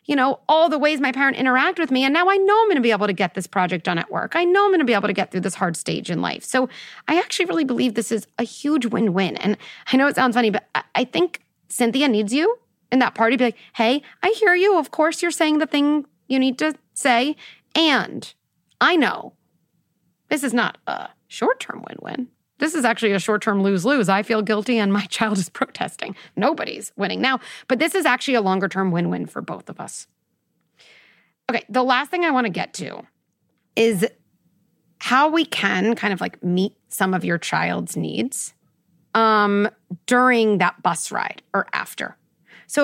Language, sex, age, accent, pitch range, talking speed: English, female, 30-49, American, 205-295 Hz, 210 wpm